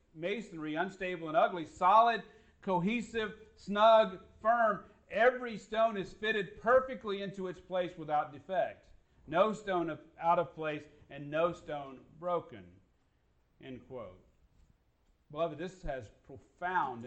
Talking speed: 115 wpm